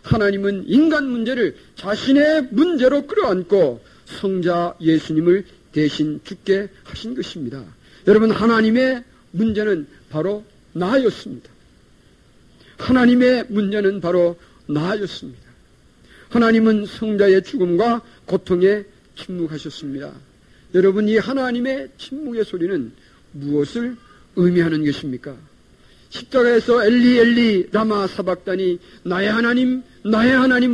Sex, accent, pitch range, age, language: male, native, 180-245 Hz, 50-69, Korean